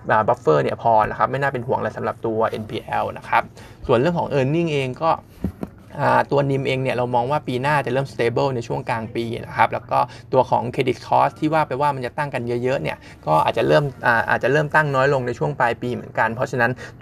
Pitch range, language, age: 115-140 Hz, Thai, 20-39